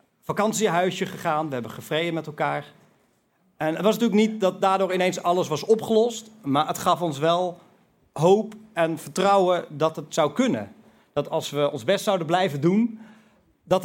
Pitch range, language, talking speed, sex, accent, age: 145-195 Hz, Dutch, 170 wpm, male, Dutch, 40-59